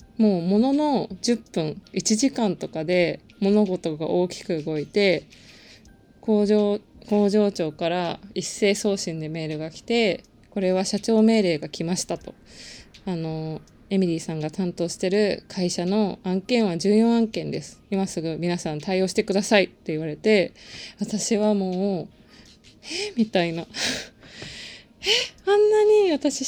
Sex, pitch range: female, 185-235 Hz